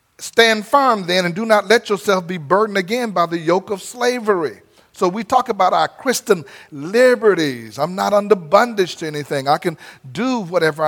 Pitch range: 155-215 Hz